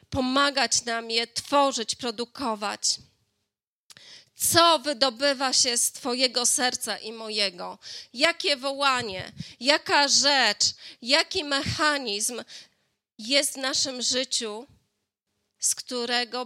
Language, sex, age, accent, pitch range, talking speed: Polish, female, 20-39, native, 225-275 Hz, 90 wpm